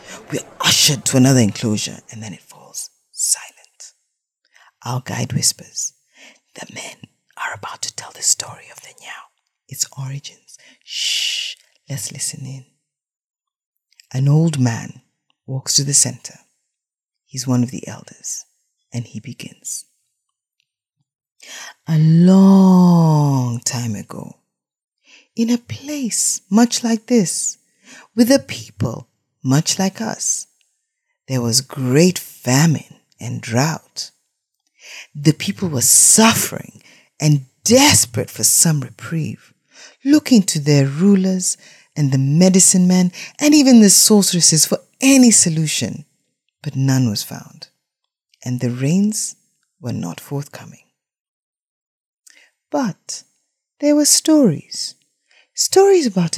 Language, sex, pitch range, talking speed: English, female, 135-210 Hz, 115 wpm